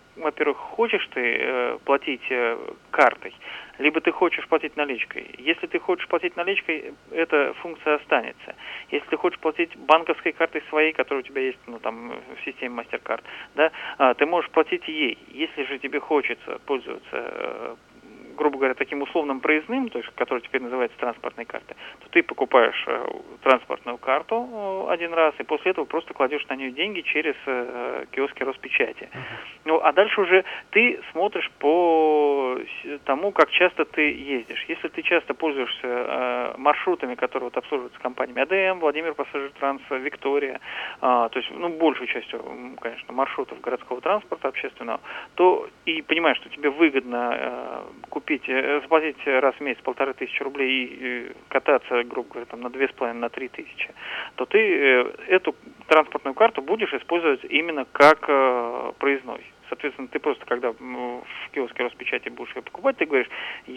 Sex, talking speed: male, 160 wpm